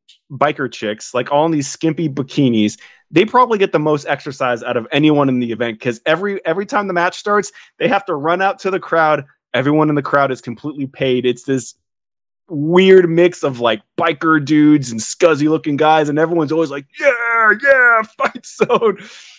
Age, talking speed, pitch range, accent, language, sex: 20-39, 190 wpm, 130-180 Hz, American, English, male